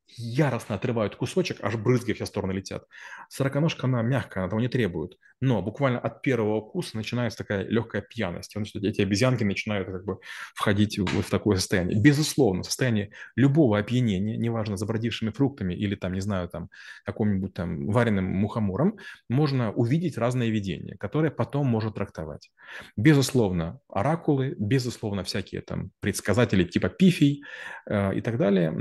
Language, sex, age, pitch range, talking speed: Russian, male, 30-49, 100-130 Hz, 155 wpm